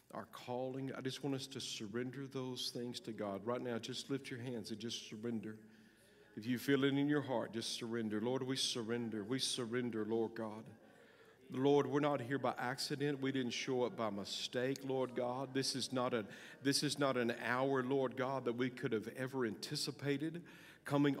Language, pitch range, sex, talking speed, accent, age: English, 125-150 Hz, male, 195 wpm, American, 50-69